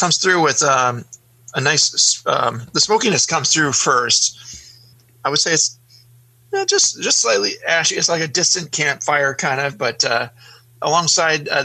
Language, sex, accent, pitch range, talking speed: English, male, American, 120-150 Hz, 165 wpm